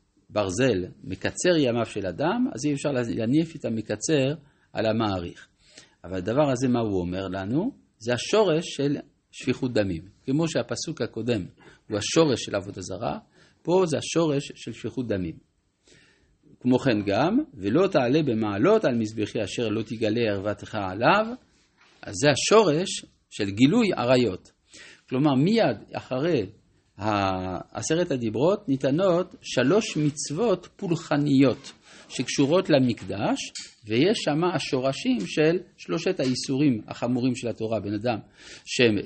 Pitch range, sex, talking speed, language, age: 105-150 Hz, male, 125 wpm, Hebrew, 50-69